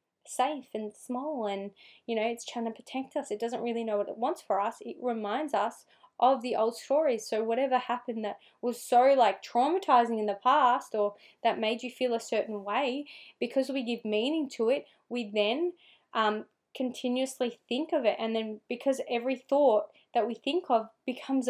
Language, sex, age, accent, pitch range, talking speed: English, female, 20-39, Australian, 220-260 Hz, 195 wpm